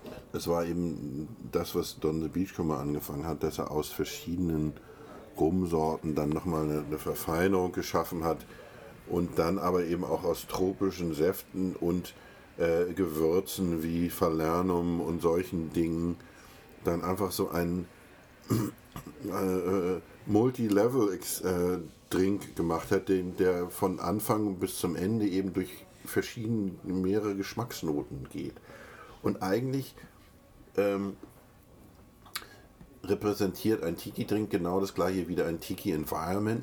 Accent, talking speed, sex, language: German, 120 wpm, male, German